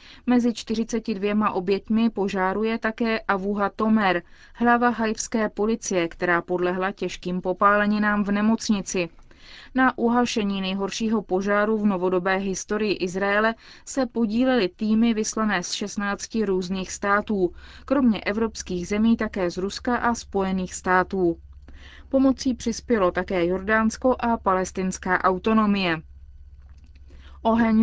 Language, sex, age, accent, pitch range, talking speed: Czech, female, 20-39, native, 190-225 Hz, 105 wpm